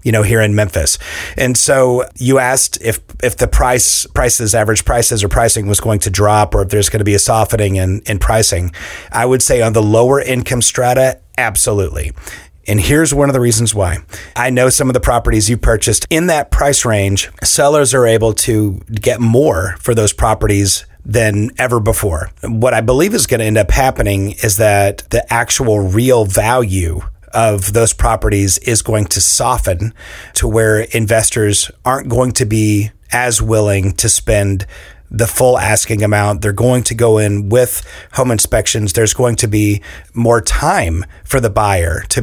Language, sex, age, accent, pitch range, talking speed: English, male, 30-49, American, 100-120 Hz, 180 wpm